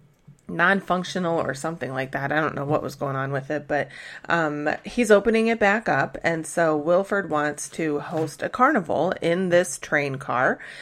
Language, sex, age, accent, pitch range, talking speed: English, female, 30-49, American, 145-195 Hz, 185 wpm